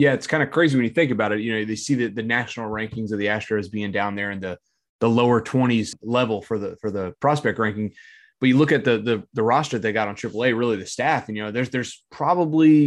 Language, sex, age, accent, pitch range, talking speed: English, male, 20-39, American, 110-130 Hz, 270 wpm